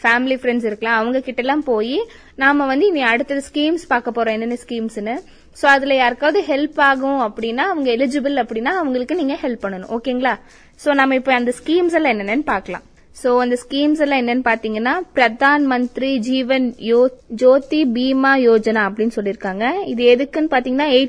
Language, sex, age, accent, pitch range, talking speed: Tamil, female, 20-39, native, 225-280 Hz, 155 wpm